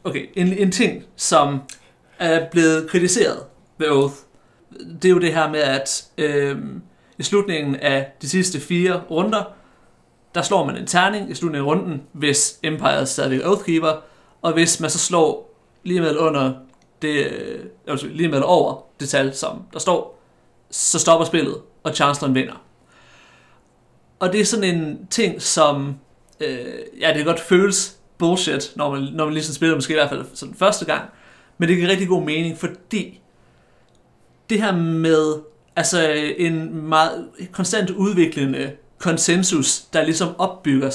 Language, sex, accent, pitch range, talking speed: Danish, male, native, 145-185 Hz, 150 wpm